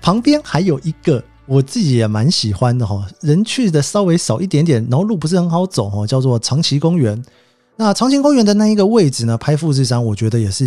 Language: Chinese